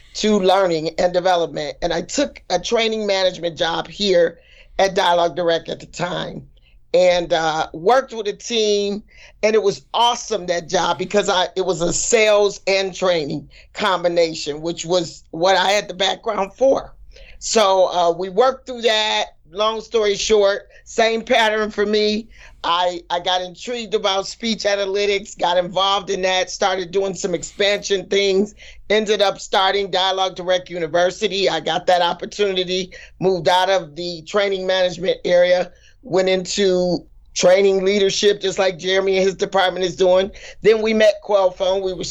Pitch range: 175-205 Hz